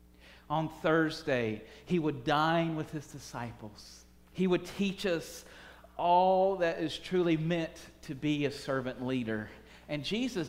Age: 40-59